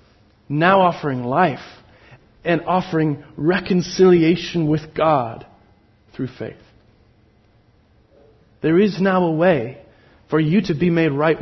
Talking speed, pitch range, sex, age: 110 wpm, 135-195 Hz, male, 40-59